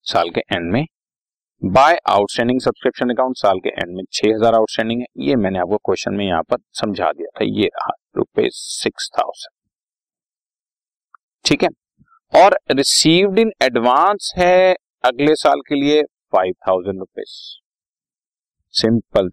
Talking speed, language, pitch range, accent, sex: 125 wpm, Hindi, 105-140 Hz, native, male